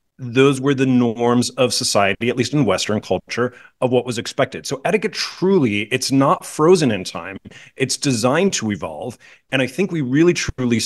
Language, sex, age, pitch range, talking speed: English, male, 30-49, 115-145 Hz, 180 wpm